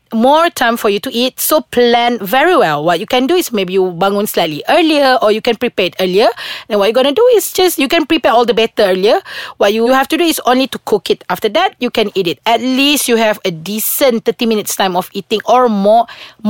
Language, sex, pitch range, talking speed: English, female, 205-275 Hz, 255 wpm